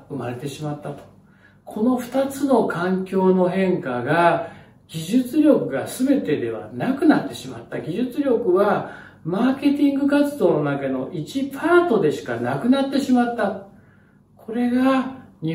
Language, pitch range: Japanese, 140-205 Hz